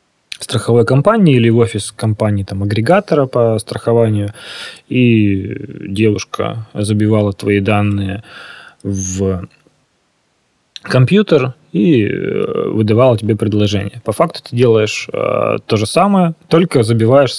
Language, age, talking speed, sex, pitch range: Russian, 20-39, 105 wpm, male, 105-130 Hz